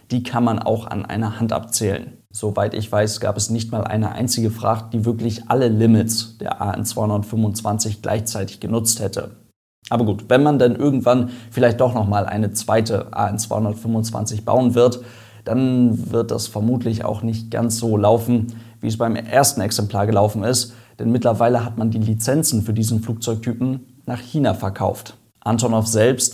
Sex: male